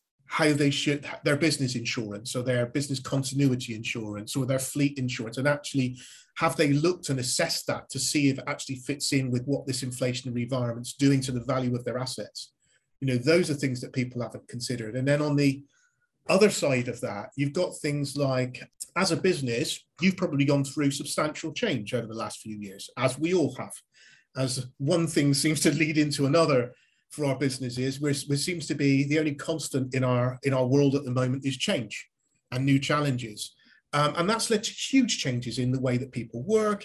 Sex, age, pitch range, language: male, 30-49, 125-160 Hz, English